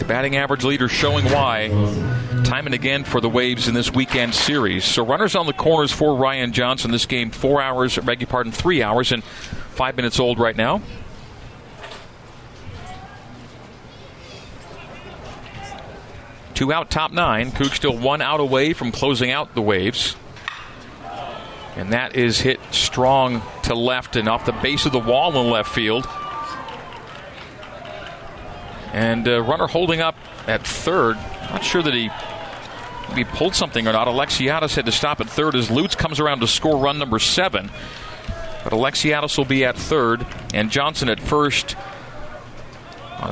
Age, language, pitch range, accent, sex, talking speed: 40-59, English, 115-140 Hz, American, male, 155 wpm